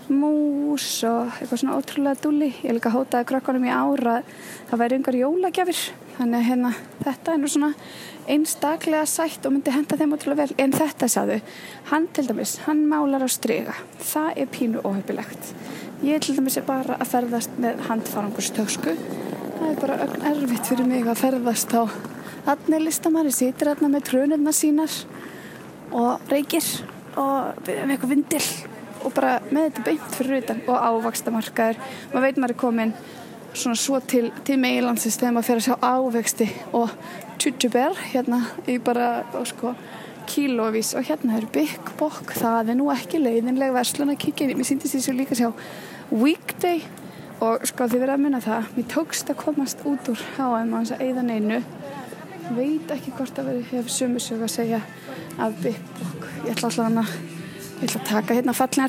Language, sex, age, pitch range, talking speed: English, female, 20-39, 235-285 Hz, 170 wpm